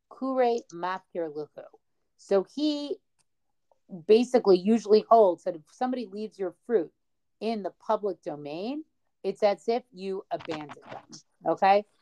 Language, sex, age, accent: English, female, 40-59, American